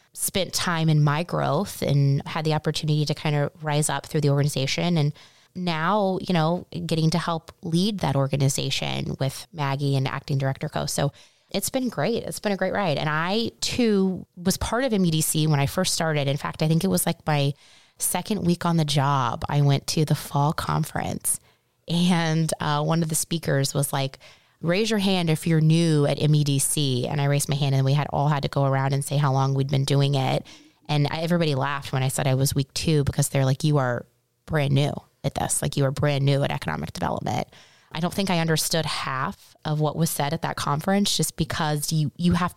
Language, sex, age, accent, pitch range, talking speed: English, female, 20-39, American, 140-165 Hz, 215 wpm